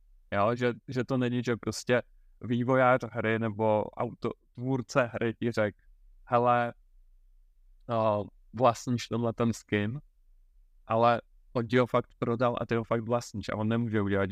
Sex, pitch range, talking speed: male, 100-125 Hz, 145 wpm